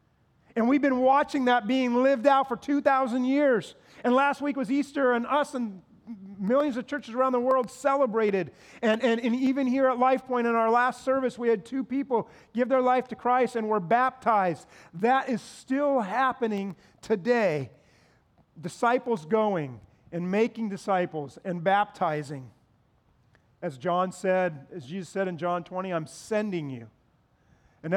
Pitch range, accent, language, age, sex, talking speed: 185-265 Hz, American, English, 40-59, male, 160 wpm